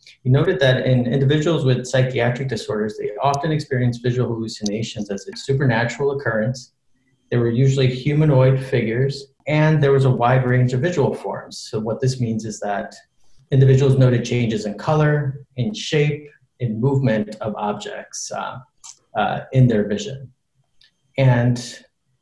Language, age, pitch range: English, 30-49, 120-140 Hz